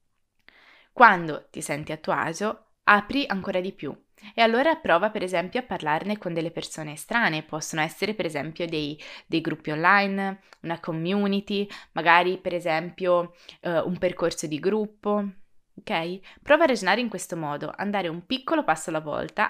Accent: native